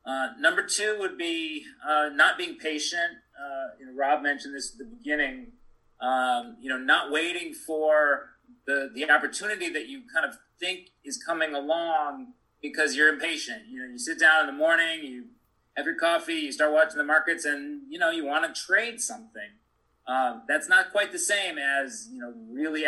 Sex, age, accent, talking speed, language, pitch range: male, 30-49, American, 190 wpm, English, 135-225 Hz